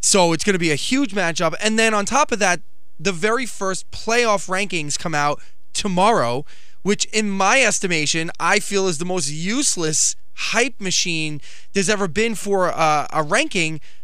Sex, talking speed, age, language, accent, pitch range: male, 175 wpm, 20-39, English, American, 150-215 Hz